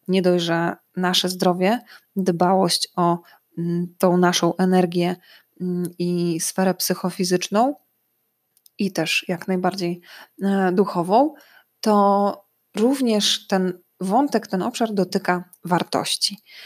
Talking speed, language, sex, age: 90 wpm, Polish, female, 20-39